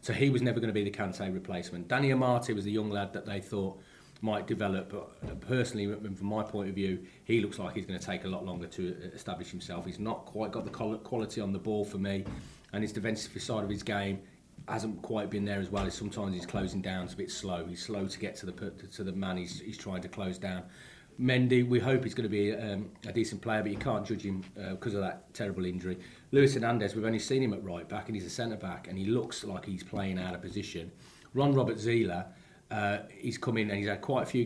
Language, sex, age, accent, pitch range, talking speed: English, male, 30-49, British, 95-115 Hz, 245 wpm